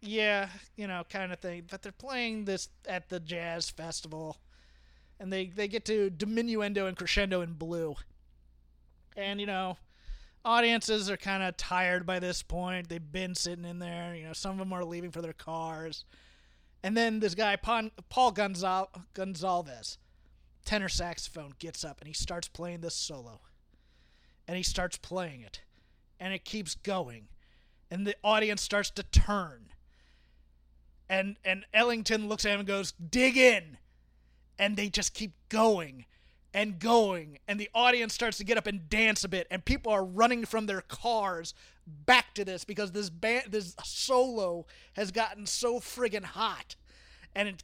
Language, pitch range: English, 165-215 Hz